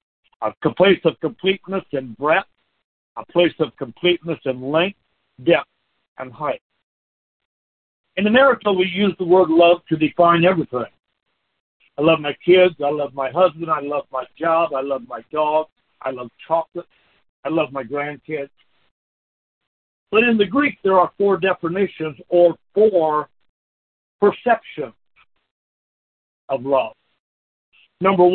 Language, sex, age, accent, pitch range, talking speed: English, male, 60-79, American, 140-185 Hz, 130 wpm